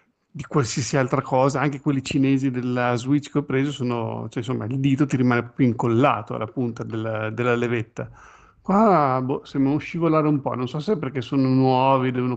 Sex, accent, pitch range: male, native, 120-145 Hz